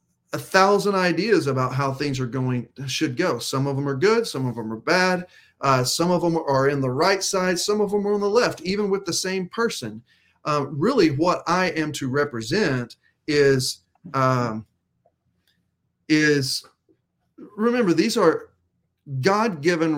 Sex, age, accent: male, 40-59, American